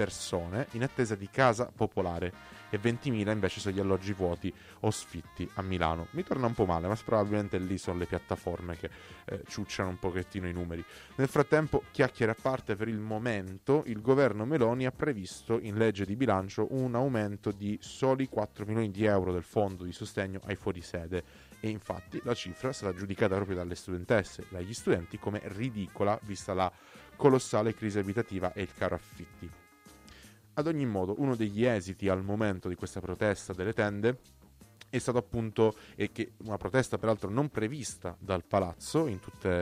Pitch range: 95-115 Hz